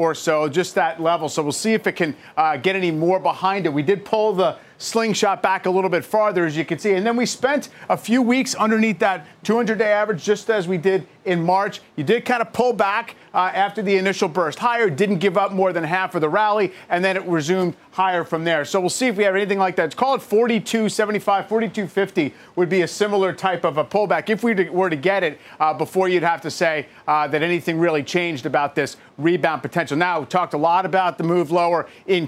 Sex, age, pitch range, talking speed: male, 40-59, 170-215 Hz, 240 wpm